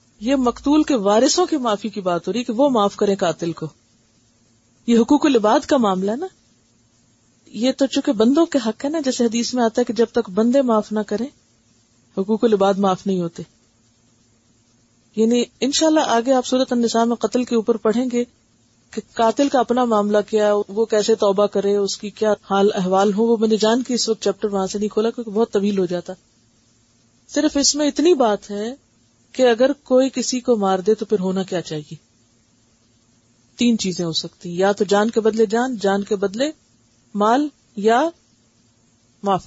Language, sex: Urdu, female